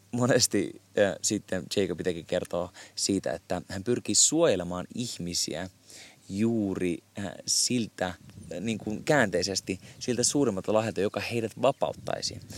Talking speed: 115 wpm